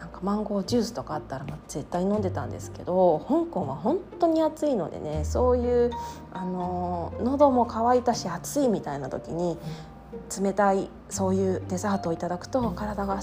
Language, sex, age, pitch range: Japanese, female, 20-39, 170-260 Hz